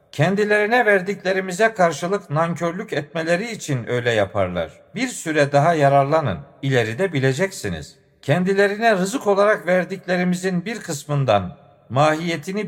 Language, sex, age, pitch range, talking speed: Turkish, male, 50-69, 135-185 Hz, 100 wpm